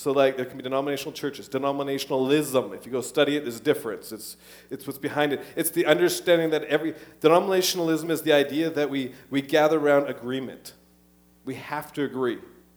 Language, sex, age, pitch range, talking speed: English, male, 40-59, 135-180 Hz, 185 wpm